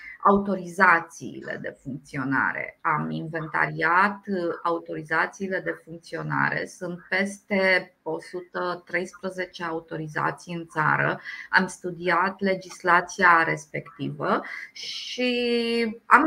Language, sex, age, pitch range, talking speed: Romanian, female, 20-39, 175-220 Hz, 75 wpm